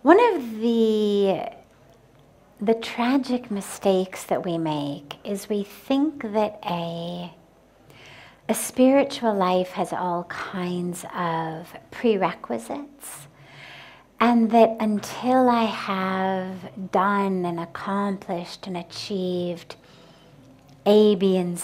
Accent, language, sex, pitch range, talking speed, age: American, English, female, 175-225 Hz, 95 wpm, 50-69